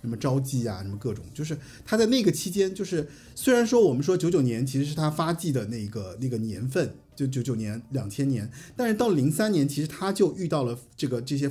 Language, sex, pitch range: Chinese, male, 125-160 Hz